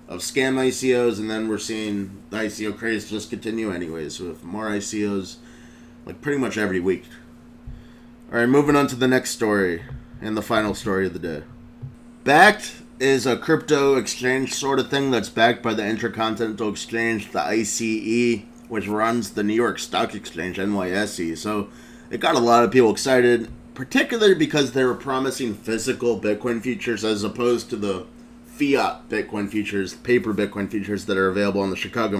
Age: 30-49